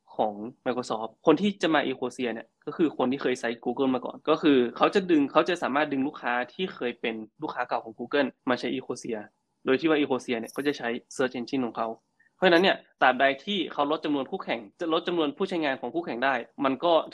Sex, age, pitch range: male, 20-39, 120-145 Hz